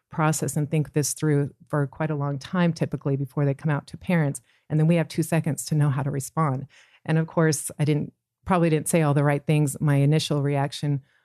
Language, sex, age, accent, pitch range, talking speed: English, female, 40-59, American, 140-170 Hz, 230 wpm